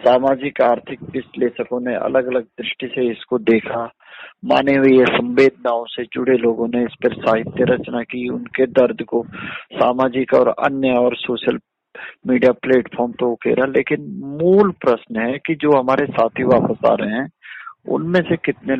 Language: Hindi